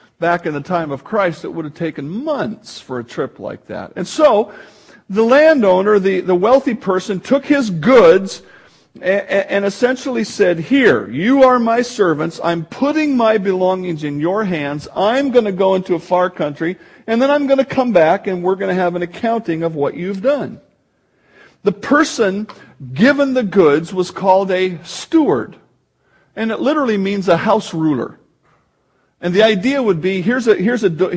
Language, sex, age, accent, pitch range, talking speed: English, male, 50-69, American, 175-230 Hz, 180 wpm